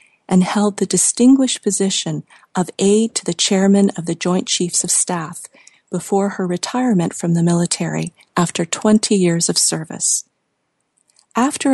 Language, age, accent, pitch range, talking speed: English, 40-59, American, 175-215 Hz, 145 wpm